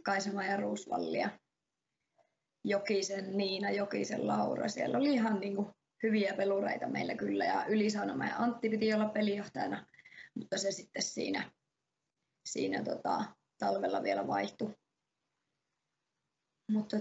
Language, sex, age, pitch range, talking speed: Finnish, female, 20-39, 195-220 Hz, 115 wpm